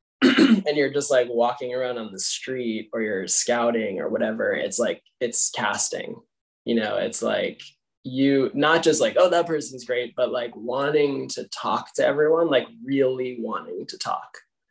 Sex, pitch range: male, 120-150 Hz